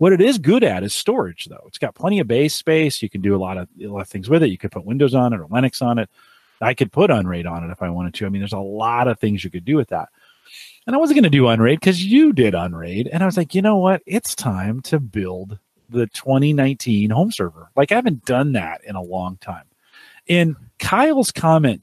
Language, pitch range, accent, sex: English, 100-150 Hz, American, male